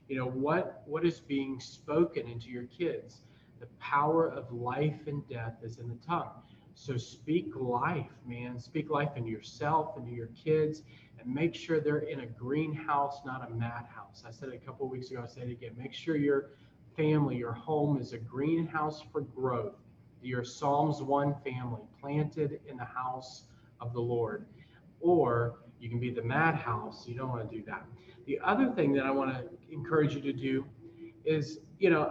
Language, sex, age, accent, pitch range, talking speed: English, male, 40-59, American, 120-150 Hz, 190 wpm